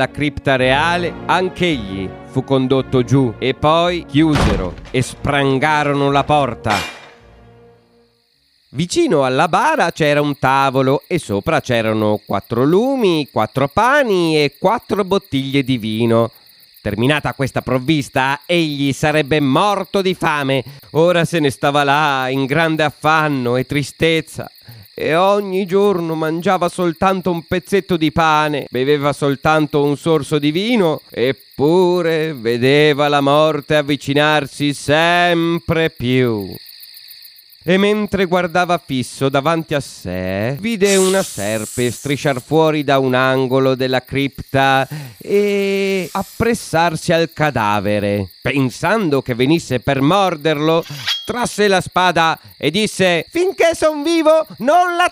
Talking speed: 120 wpm